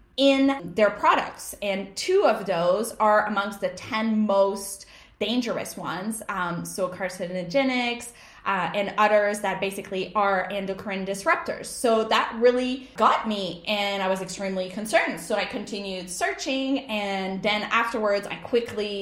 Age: 10-29